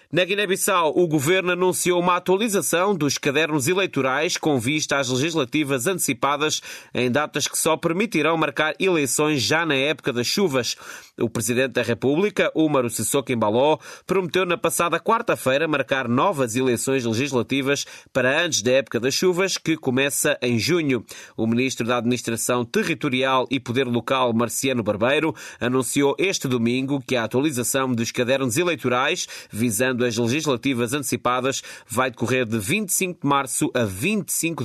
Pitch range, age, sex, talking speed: 125-160 Hz, 30-49, male, 145 wpm